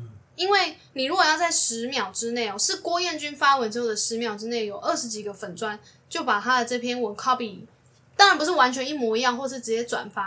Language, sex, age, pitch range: Chinese, female, 10-29, 220-285 Hz